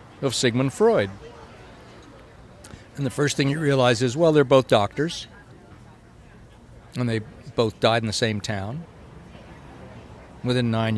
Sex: male